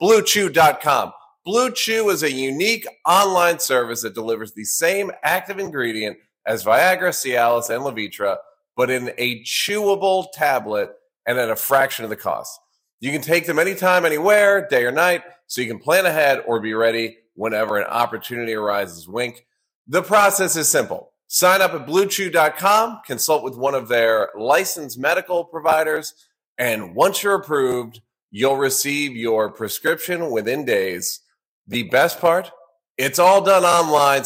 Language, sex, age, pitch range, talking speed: English, male, 30-49, 120-185 Hz, 150 wpm